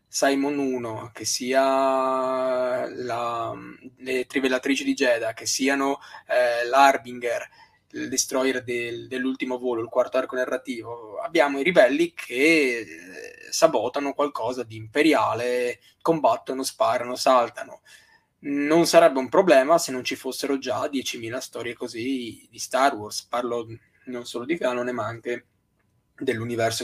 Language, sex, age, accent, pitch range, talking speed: Italian, male, 20-39, native, 120-140 Hz, 125 wpm